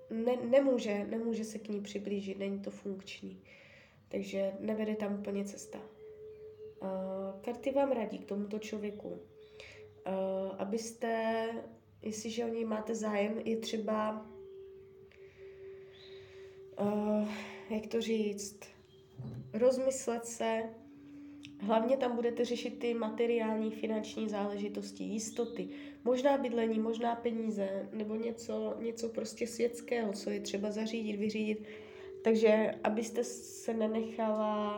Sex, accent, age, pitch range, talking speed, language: female, native, 20-39, 200-235 Hz, 105 wpm, Czech